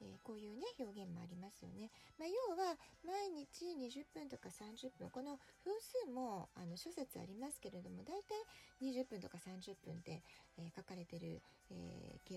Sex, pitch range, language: female, 200-320 Hz, Japanese